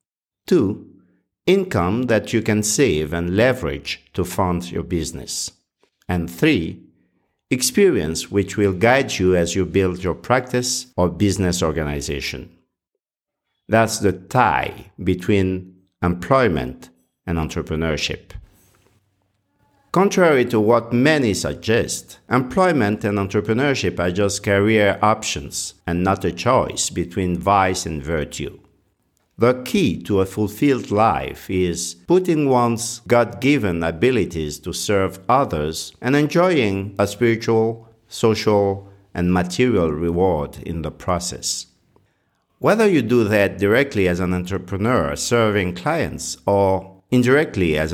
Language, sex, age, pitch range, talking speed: English, male, 50-69, 85-115 Hz, 115 wpm